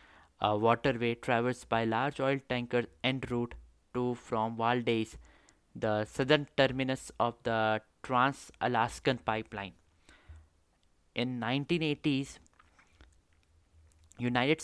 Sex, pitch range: male, 110-135 Hz